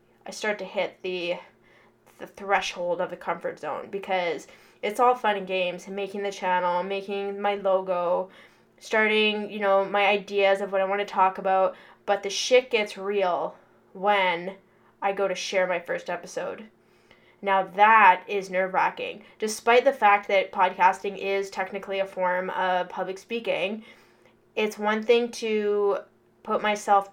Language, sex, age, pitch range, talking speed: English, female, 10-29, 190-210 Hz, 160 wpm